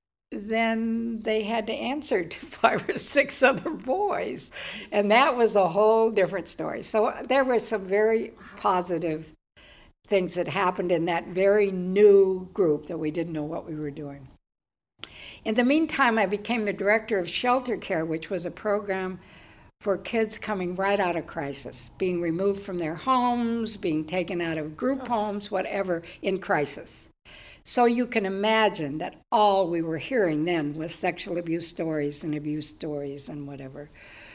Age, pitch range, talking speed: 60-79, 160-215 Hz, 165 wpm